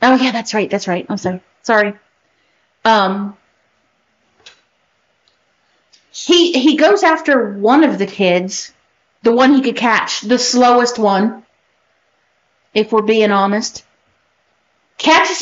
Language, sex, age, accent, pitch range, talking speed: English, female, 50-69, American, 190-235 Hz, 120 wpm